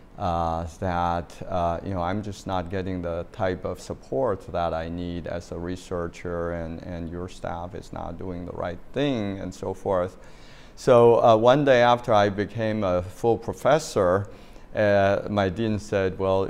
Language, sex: English, male